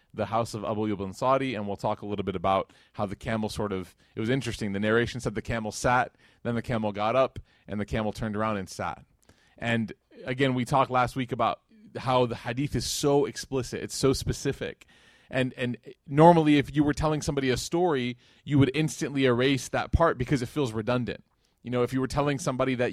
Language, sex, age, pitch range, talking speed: English, male, 30-49, 120-150 Hz, 215 wpm